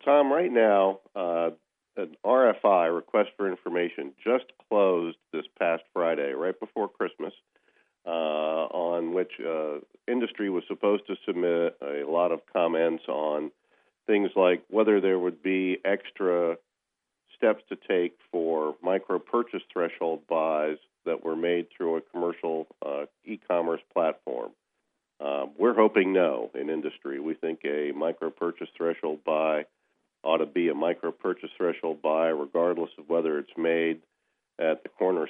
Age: 50-69